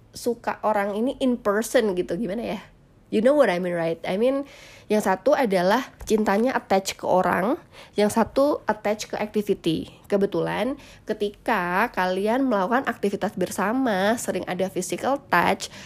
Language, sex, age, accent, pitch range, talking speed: Indonesian, female, 20-39, native, 190-235 Hz, 145 wpm